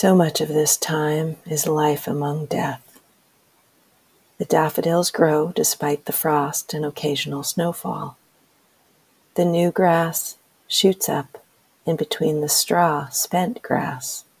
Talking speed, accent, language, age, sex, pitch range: 120 wpm, American, English, 50-69, female, 155-175 Hz